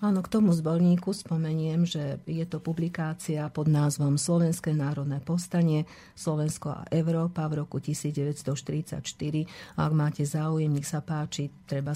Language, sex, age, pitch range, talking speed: Slovak, female, 50-69, 145-165 Hz, 135 wpm